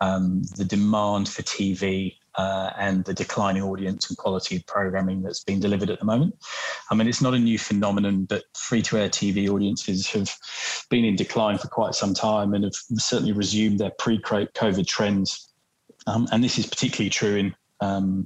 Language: English